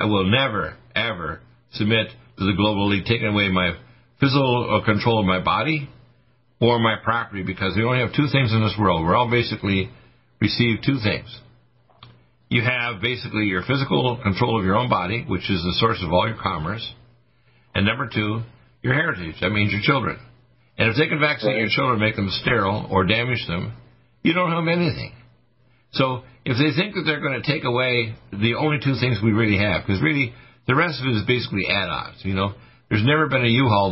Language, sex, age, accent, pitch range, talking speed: English, male, 60-79, American, 100-125 Hz, 200 wpm